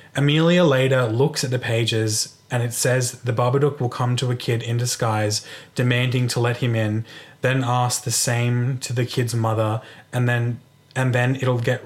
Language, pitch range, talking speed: English, 115-130 Hz, 185 wpm